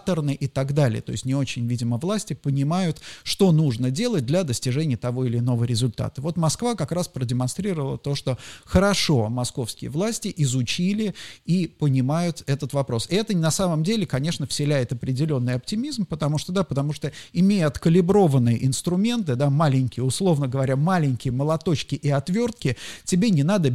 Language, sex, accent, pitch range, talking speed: Russian, male, native, 130-170 Hz, 155 wpm